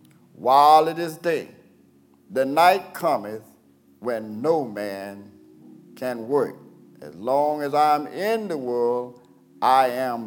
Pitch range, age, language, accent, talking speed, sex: 115-150 Hz, 50-69, English, American, 125 wpm, male